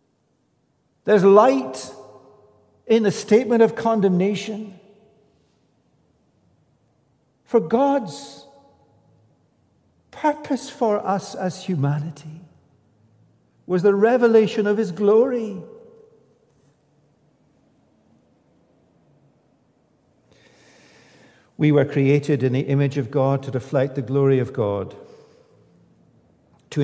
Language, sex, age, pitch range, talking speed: English, male, 60-79, 125-185 Hz, 80 wpm